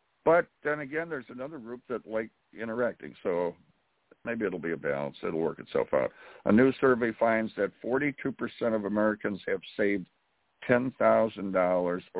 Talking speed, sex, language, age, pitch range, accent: 150 wpm, male, English, 60-79, 100-130 Hz, American